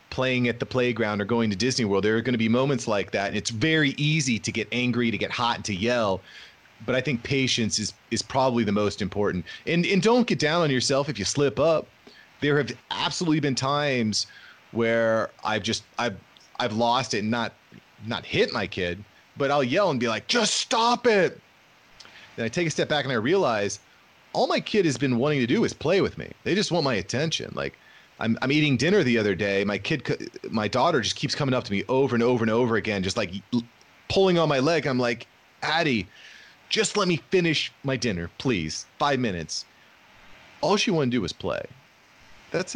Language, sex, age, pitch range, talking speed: English, male, 30-49, 105-135 Hz, 215 wpm